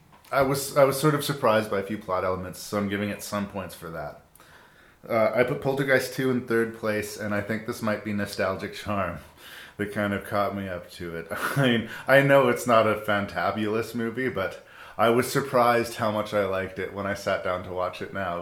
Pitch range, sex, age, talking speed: 95-115 Hz, male, 30-49, 230 wpm